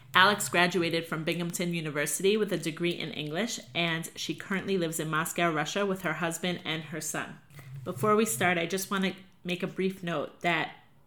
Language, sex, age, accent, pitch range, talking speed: English, female, 30-49, American, 160-185 Hz, 190 wpm